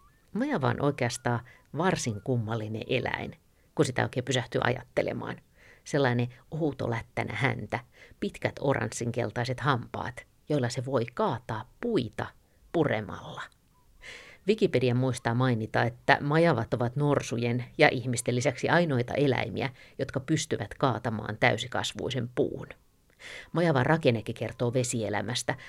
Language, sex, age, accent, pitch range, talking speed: Finnish, female, 50-69, native, 115-145 Hz, 105 wpm